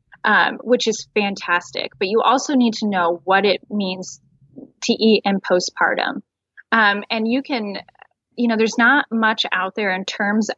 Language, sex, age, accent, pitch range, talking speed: English, female, 10-29, American, 185-220 Hz, 170 wpm